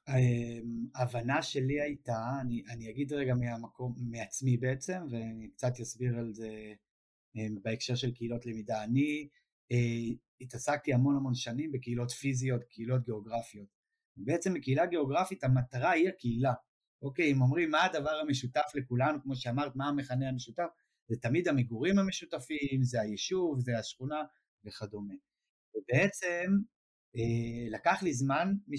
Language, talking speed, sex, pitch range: Hebrew, 125 wpm, male, 115-150 Hz